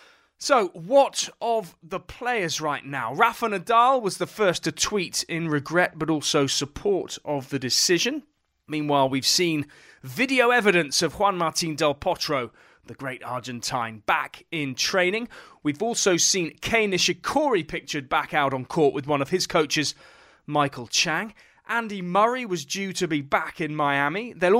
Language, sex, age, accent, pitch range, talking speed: English, male, 30-49, British, 140-200 Hz, 160 wpm